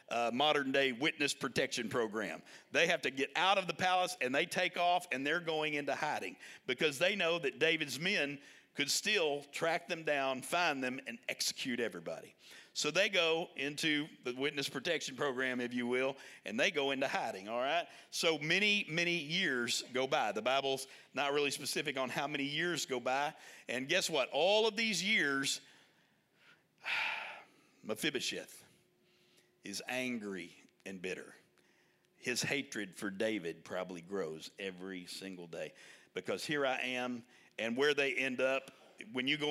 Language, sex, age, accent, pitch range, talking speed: English, male, 50-69, American, 120-150 Hz, 165 wpm